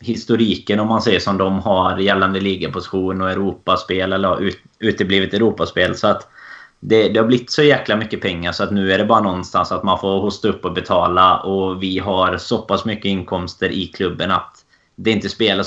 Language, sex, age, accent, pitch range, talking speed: Swedish, male, 20-39, native, 90-105 Hz, 200 wpm